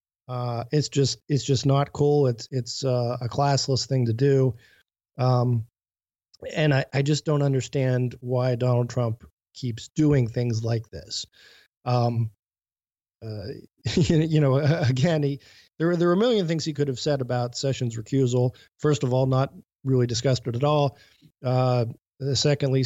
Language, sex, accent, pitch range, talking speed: English, male, American, 120-140 Hz, 160 wpm